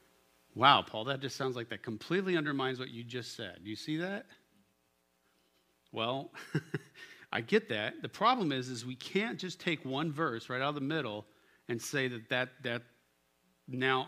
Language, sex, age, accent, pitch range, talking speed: English, male, 40-59, American, 110-155 Hz, 180 wpm